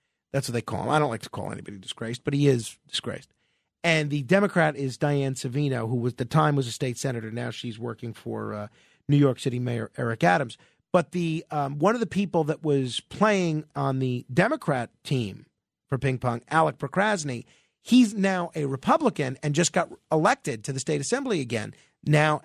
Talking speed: 200 wpm